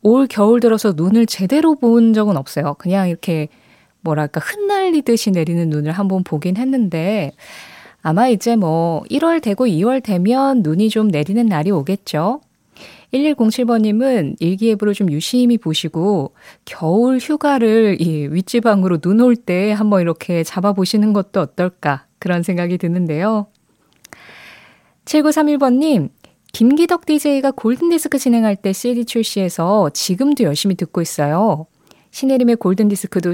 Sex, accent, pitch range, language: female, native, 180-255 Hz, Korean